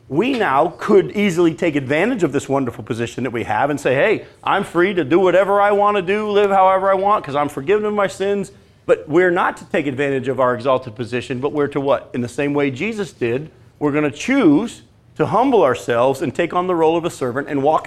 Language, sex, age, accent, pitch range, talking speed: English, male, 40-59, American, 130-180 Hz, 240 wpm